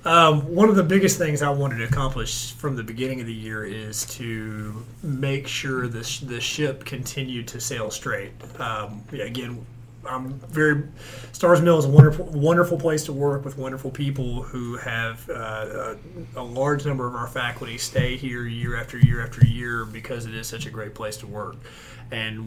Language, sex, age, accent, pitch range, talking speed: English, male, 30-49, American, 115-135 Hz, 185 wpm